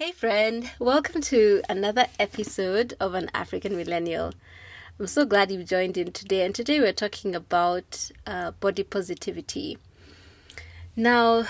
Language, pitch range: English, 170-210 Hz